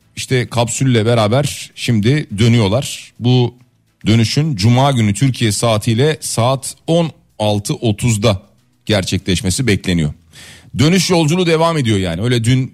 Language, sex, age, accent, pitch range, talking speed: Turkish, male, 40-59, native, 105-135 Hz, 105 wpm